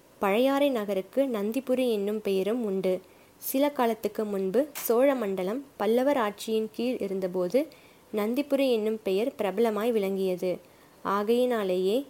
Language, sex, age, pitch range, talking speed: Tamil, female, 20-39, 195-235 Hz, 105 wpm